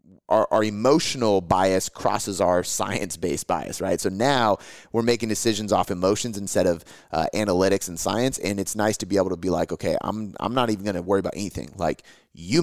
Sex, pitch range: male, 95-115 Hz